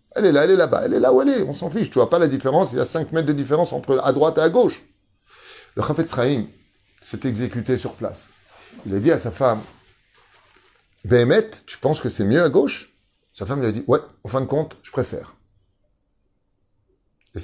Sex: male